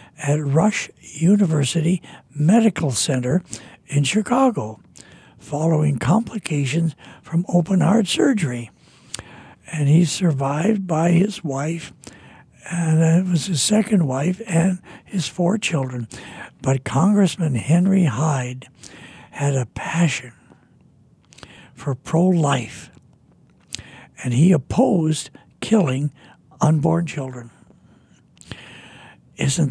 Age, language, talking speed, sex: 60-79, English, 90 wpm, male